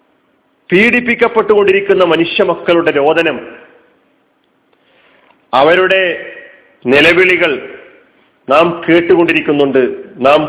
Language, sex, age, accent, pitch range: Malayalam, male, 40-59, native, 150-220 Hz